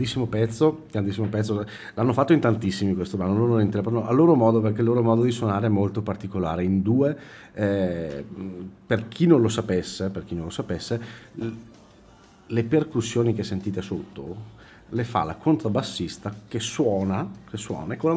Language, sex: Italian, male